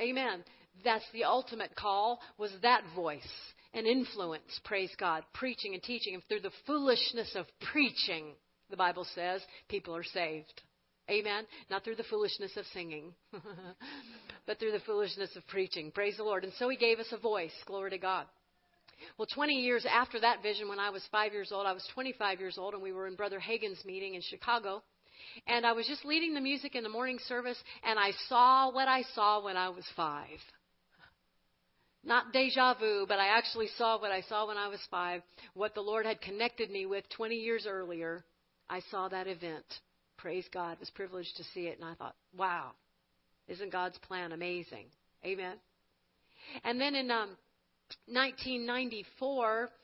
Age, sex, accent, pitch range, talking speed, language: 50-69, female, American, 190-235 Hz, 180 wpm, English